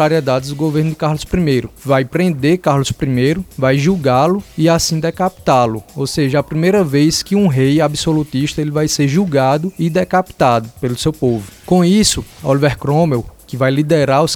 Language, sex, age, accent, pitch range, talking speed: Portuguese, male, 20-39, Brazilian, 130-160 Hz, 170 wpm